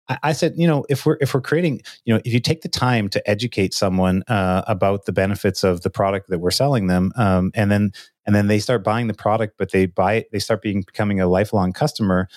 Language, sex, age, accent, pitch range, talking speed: English, male, 30-49, American, 100-120 Hz, 250 wpm